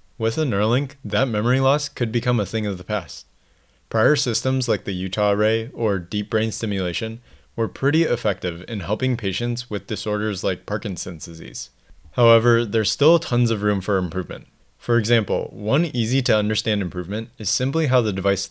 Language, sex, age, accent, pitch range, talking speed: English, male, 20-39, American, 100-120 Hz, 175 wpm